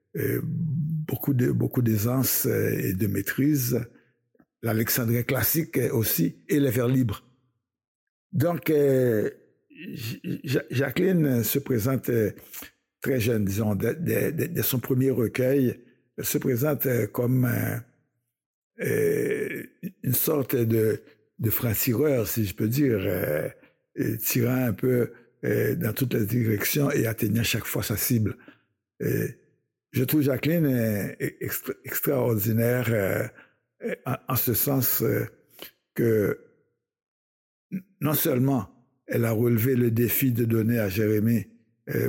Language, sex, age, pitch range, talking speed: French, male, 60-79, 115-135 Hz, 115 wpm